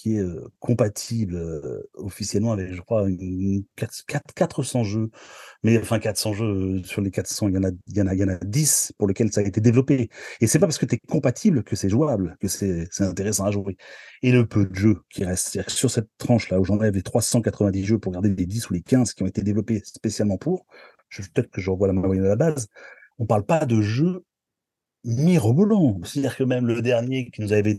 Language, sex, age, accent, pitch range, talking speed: French, male, 40-59, French, 95-120 Hz, 230 wpm